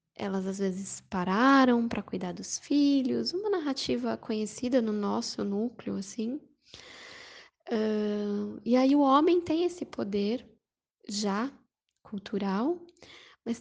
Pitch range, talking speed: 210-275 Hz, 105 wpm